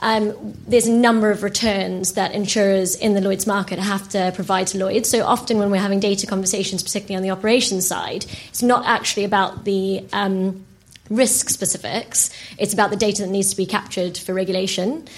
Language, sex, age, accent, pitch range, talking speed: English, female, 20-39, British, 185-210 Hz, 190 wpm